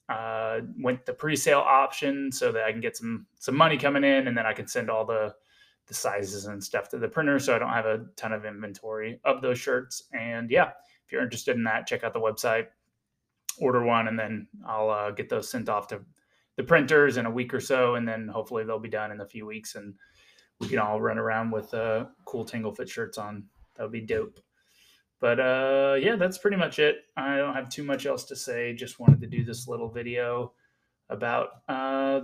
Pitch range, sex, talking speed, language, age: 110-135 Hz, male, 225 wpm, English, 20-39